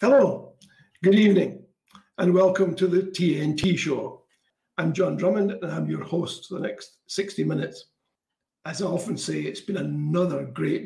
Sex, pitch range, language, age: male, 170-200 Hz, English, 60-79